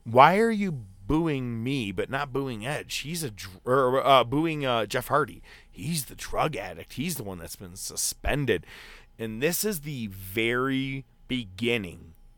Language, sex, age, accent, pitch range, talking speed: English, male, 30-49, American, 95-135 Hz, 165 wpm